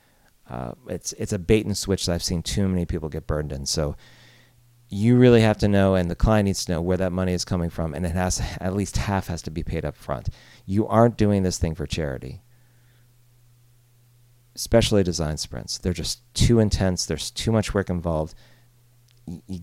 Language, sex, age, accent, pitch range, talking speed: English, male, 40-59, American, 90-120 Hz, 200 wpm